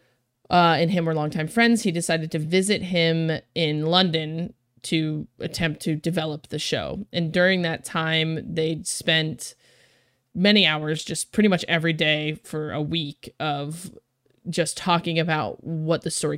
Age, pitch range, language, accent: 20-39, 155-170 Hz, English, American